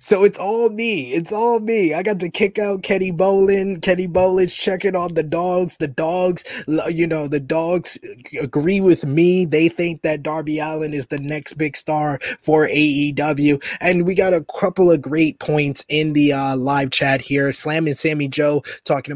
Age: 20-39